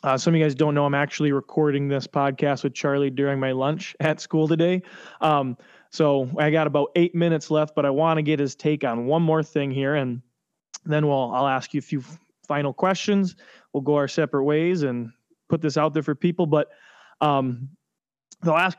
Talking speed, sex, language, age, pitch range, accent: 210 wpm, male, English, 20-39, 135-160 Hz, American